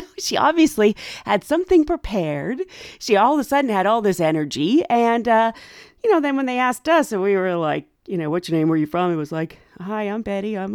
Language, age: English, 40-59